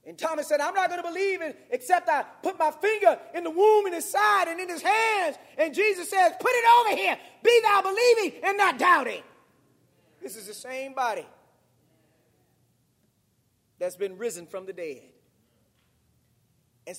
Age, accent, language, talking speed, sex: 40-59, American, English, 175 wpm, male